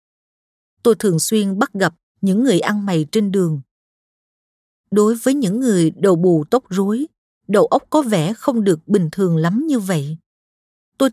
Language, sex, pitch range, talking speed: Vietnamese, female, 180-230 Hz, 165 wpm